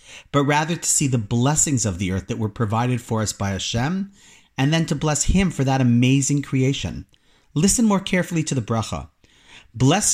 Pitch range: 115-170 Hz